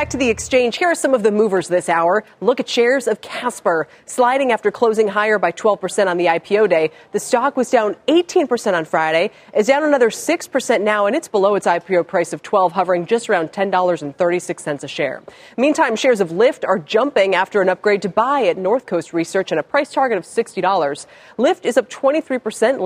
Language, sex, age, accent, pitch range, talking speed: English, female, 30-49, American, 175-255 Hz, 205 wpm